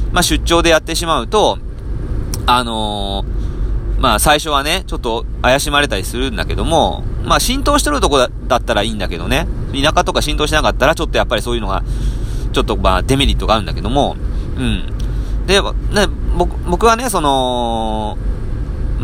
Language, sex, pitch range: Japanese, male, 100-160 Hz